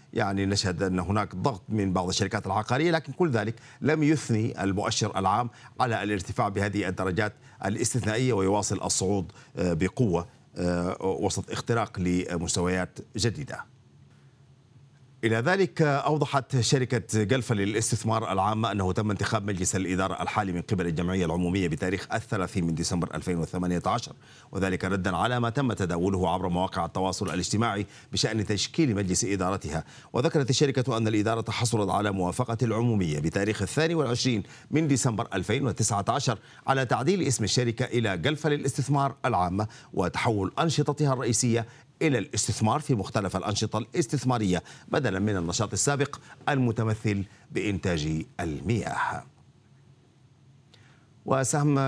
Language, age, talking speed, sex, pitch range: Arabic, 40-59, 120 wpm, male, 95-130 Hz